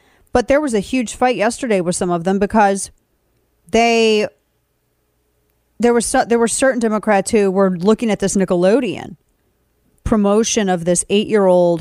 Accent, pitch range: American, 185-230 Hz